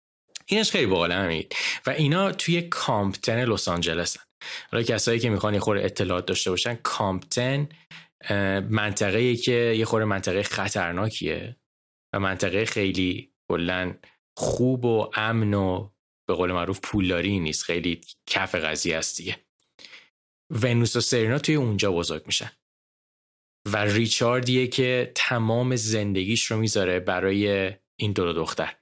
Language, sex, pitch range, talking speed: Persian, male, 95-125 Hz, 130 wpm